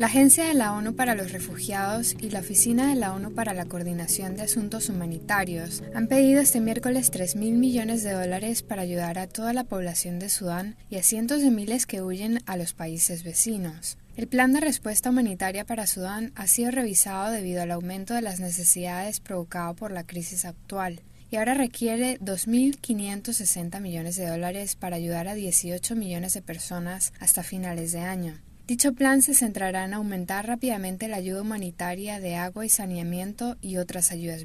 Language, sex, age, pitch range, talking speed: Spanish, female, 10-29, 180-230 Hz, 180 wpm